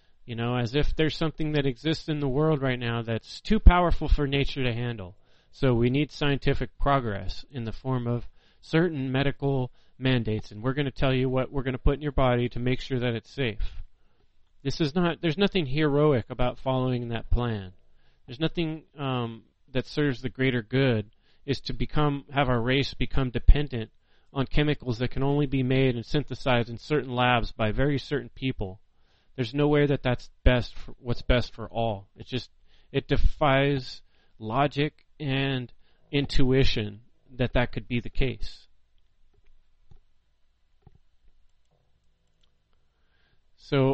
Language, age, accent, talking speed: English, 30-49, American, 165 wpm